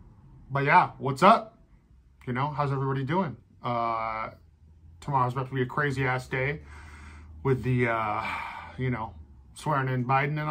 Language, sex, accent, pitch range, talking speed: English, male, American, 115-140 Hz, 155 wpm